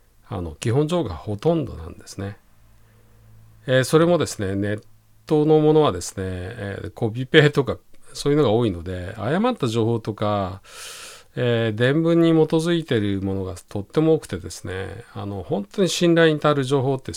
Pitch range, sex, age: 100-145 Hz, male, 50-69